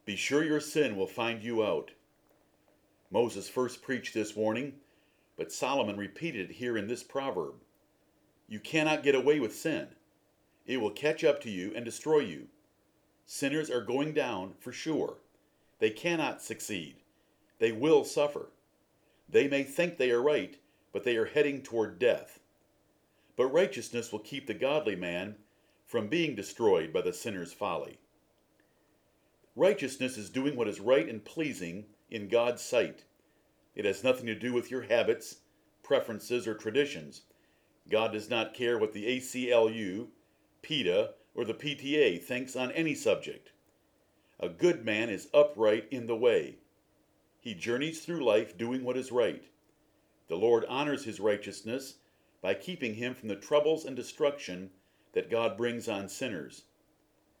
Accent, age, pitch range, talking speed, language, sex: American, 50-69, 115-150 Hz, 150 wpm, English, male